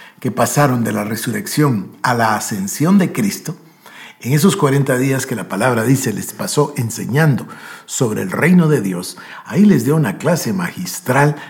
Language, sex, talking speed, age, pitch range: Spanish, male, 165 wpm, 60-79, 135-205 Hz